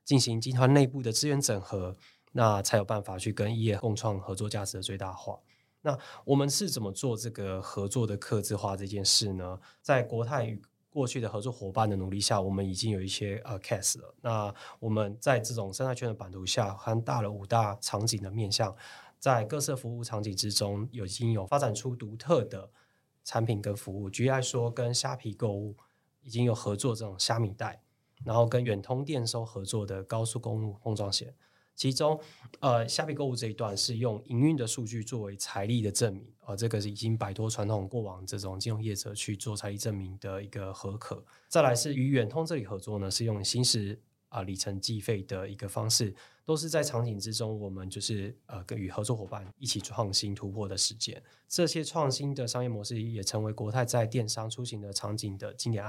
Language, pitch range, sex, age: Chinese, 100-120 Hz, male, 20-39